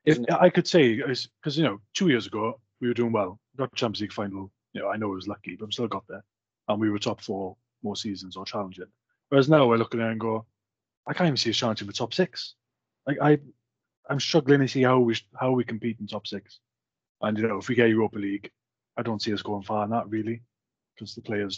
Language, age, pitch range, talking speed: English, 30-49, 95-120 Hz, 255 wpm